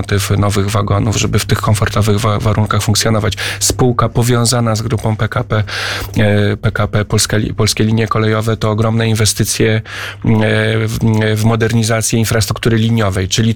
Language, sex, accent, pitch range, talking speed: Polish, male, native, 105-115 Hz, 115 wpm